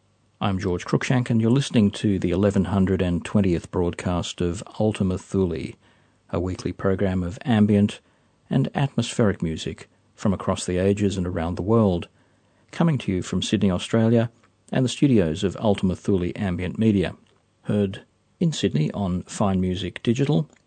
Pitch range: 90-110 Hz